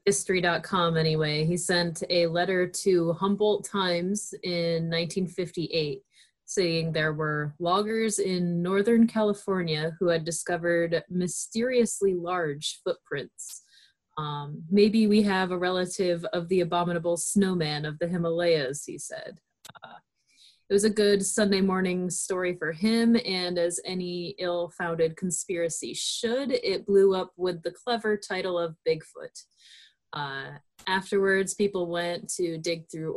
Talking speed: 130 wpm